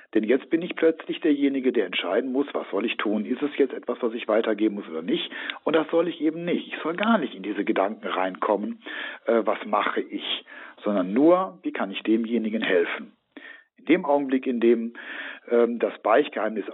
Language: German